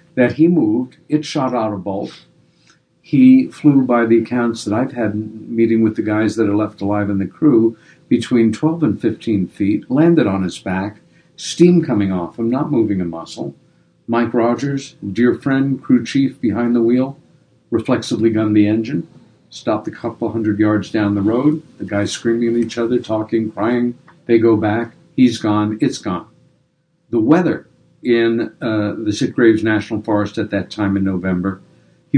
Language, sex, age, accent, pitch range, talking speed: English, male, 50-69, American, 100-120 Hz, 175 wpm